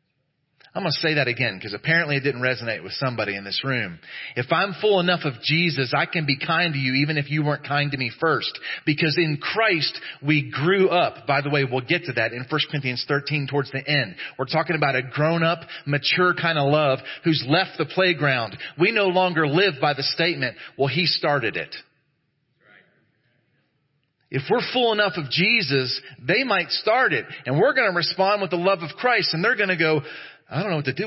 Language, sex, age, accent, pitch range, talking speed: English, male, 40-59, American, 135-175 Hz, 215 wpm